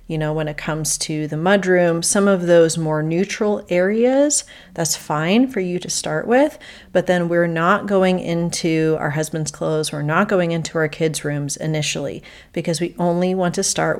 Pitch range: 155-185 Hz